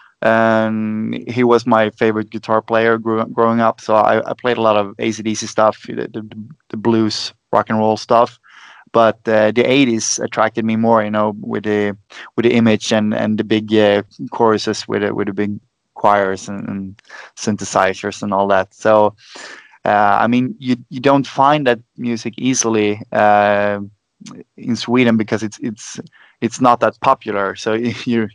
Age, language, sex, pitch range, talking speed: 20-39, English, male, 105-115 Hz, 175 wpm